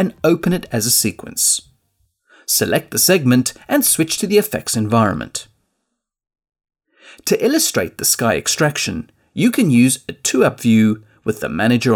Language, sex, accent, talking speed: English, male, British, 145 wpm